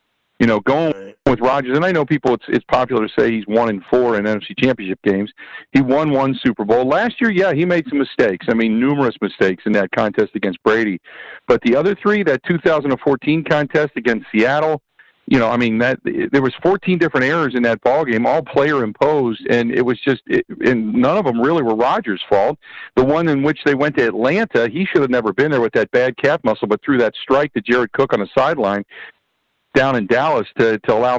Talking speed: 225 wpm